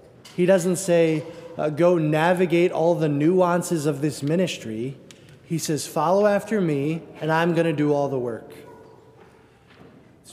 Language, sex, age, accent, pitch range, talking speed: English, male, 20-39, American, 145-170 Hz, 150 wpm